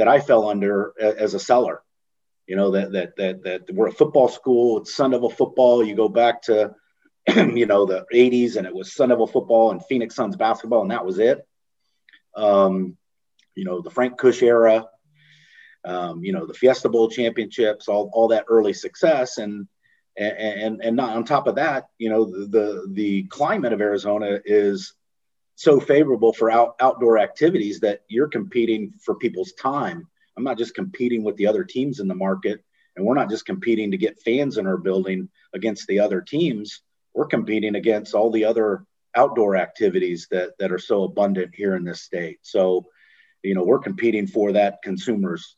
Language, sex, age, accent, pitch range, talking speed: English, male, 40-59, American, 100-120 Hz, 190 wpm